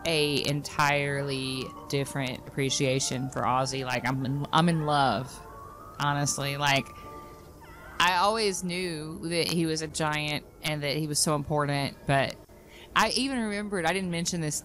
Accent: American